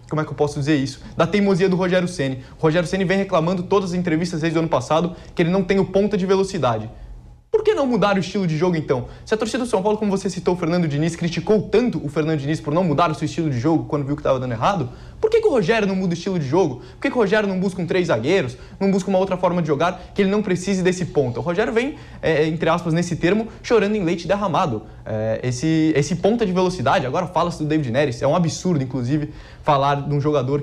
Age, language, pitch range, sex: 20-39, English, 150-200 Hz, male